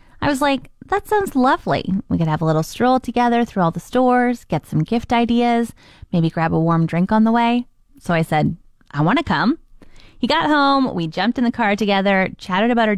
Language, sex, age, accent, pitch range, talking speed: English, female, 20-39, American, 180-260 Hz, 215 wpm